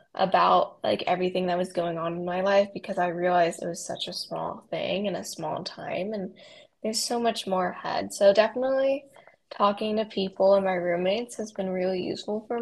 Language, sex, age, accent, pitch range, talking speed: English, female, 10-29, American, 185-220 Hz, 200 wpm